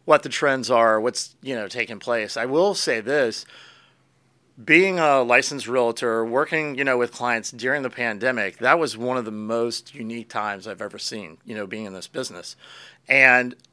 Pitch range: 120-150 Hz